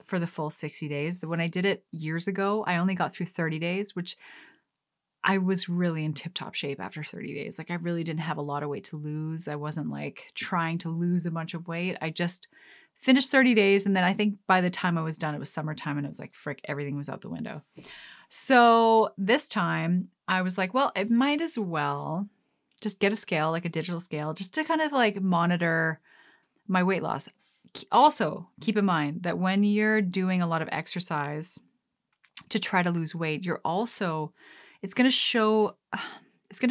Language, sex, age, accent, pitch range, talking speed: English, female, 20-39, American, 160-205 Hz, 210 wpm